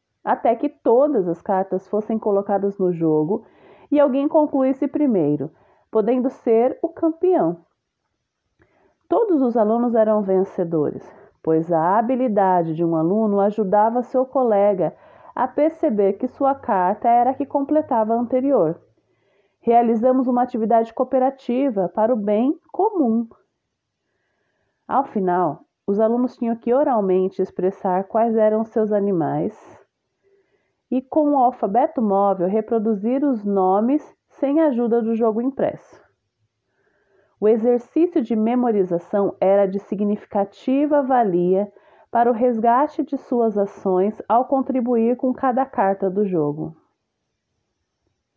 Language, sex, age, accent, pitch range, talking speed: Portuguese, female, 30-49, Brazilian, 200-260 Hz, 120 wpm